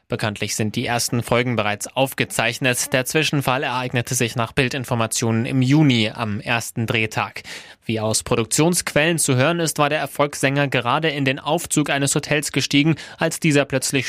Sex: male